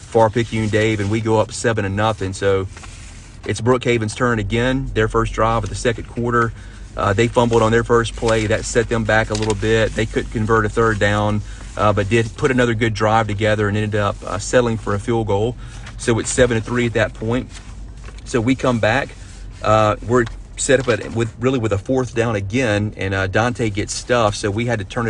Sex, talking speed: male, 225 wpm